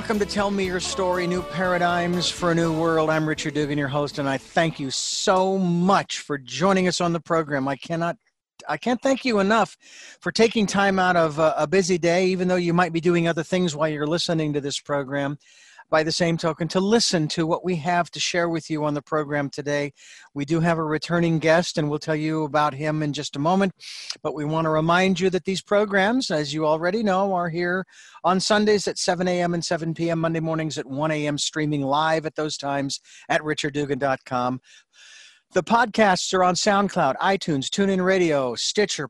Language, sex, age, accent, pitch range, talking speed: English, male, 50-69, American, 155-185 Hz, 210 wpm